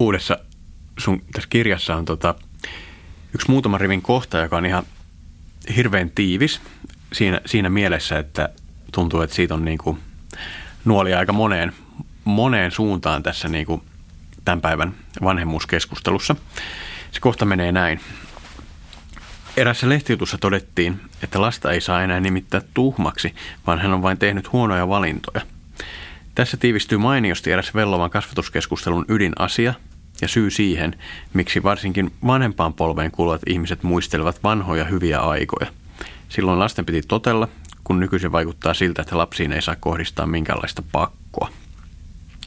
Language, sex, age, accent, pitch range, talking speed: Finnish, male, 30-49, native, 80-100 Hz, 125 wpm